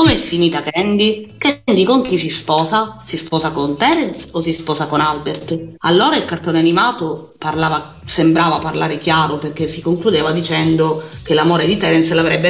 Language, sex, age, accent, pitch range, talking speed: Italian, female, 30-49, native, 160-205 Hz, 165 wpm